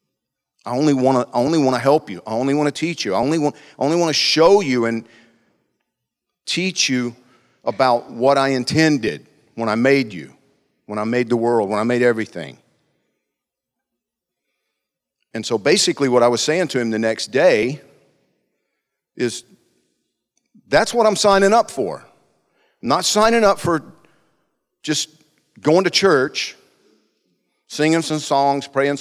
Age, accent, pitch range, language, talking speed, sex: 50-69, American, 115-140 Hz, English, 145 wpm, male